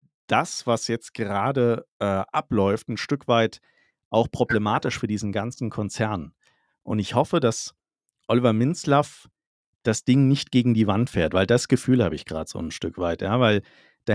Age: 40-59